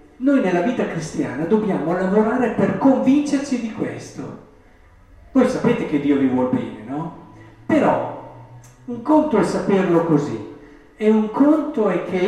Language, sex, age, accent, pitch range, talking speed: Italian, male, 50-69, native, 160-230 Hz, 140 wpm